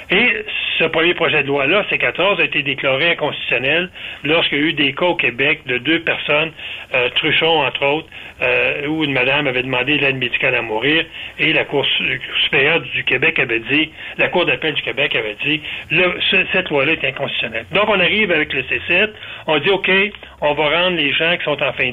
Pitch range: 145-190 Hz